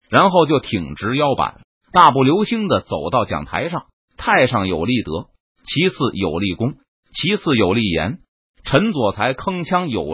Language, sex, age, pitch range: Chinese, male, 30-49, 120-185 Hz